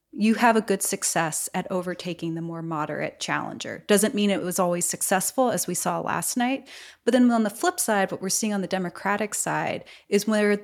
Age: 30-49